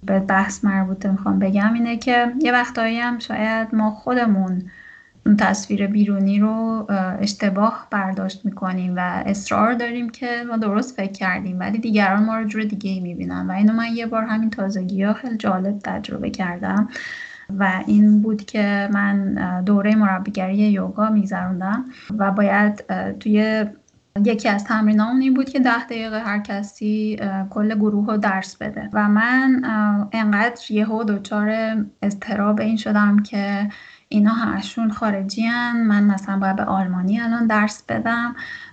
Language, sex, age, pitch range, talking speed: Persian, female, 10-29, 200-230 Hz, 145 wpm